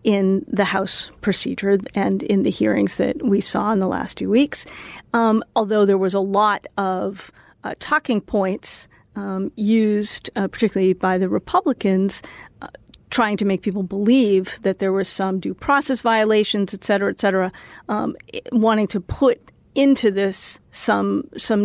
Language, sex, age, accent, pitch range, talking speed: English, female, 40-59, American, 195-235 Hz, 160 wpm